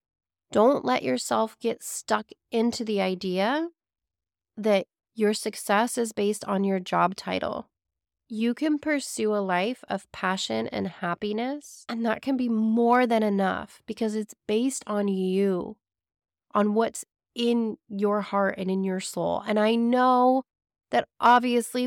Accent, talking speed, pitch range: American, 145 wpm, 215-265 Hz